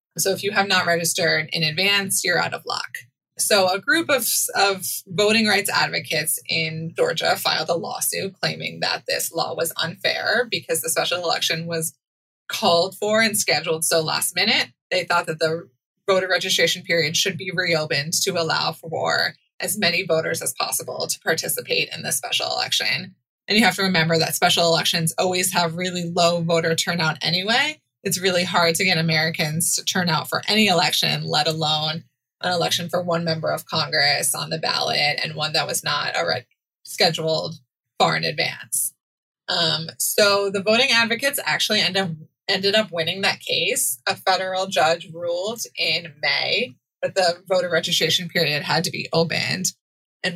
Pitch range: 165-195 Hz